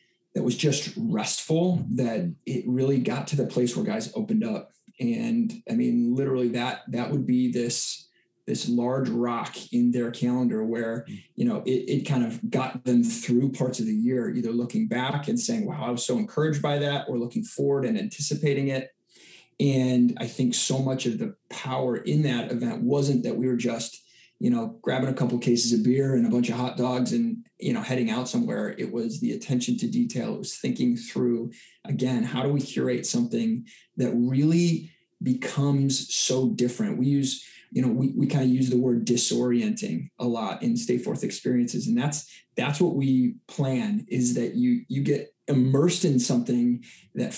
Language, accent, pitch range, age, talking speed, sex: English, American, 125-205 Hz, 20-39, 195 wpm, male